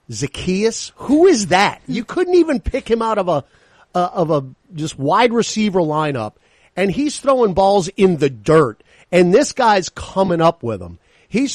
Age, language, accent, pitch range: 50-69, English, American, 130-185 Hz